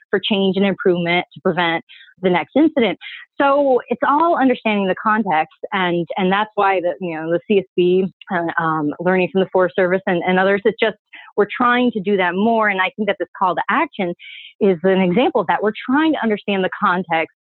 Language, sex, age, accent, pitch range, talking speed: English, female, 30-49, American, 180-220 Hz, 210 wpm